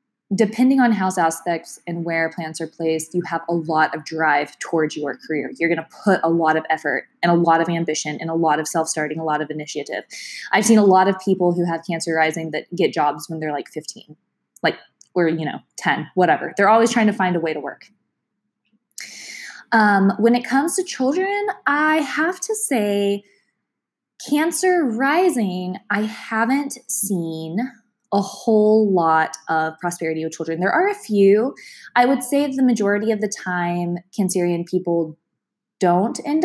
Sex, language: female, English